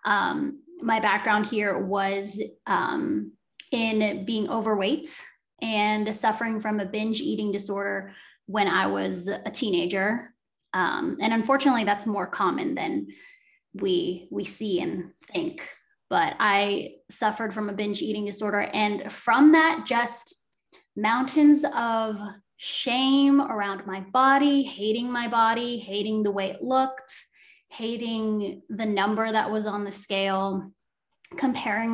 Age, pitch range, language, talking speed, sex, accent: 10-29, 205-250 Hz, English, 130 wpm, female, American